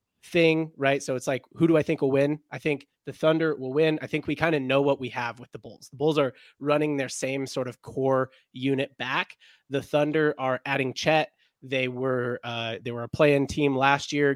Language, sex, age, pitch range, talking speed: English, male, 20-39, 130-150 Hz, 230 wpm